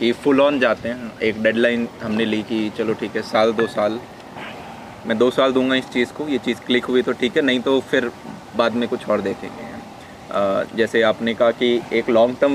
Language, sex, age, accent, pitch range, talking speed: Hindi, male, 30-49, native, 115-135 Hz, 215 wpm